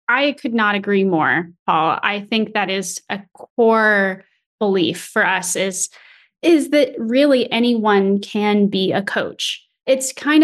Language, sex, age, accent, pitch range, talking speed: English, female, 20-39, American, 205-250 Hz, 150 wpm